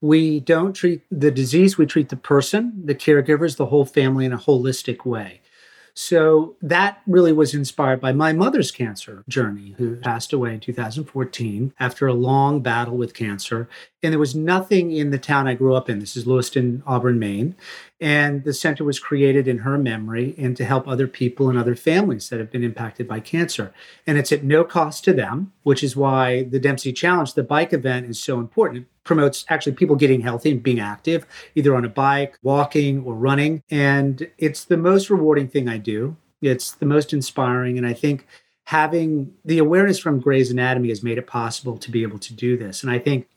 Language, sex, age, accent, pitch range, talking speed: English, male, 40-59, American, 125-155 Hz, 200 wpm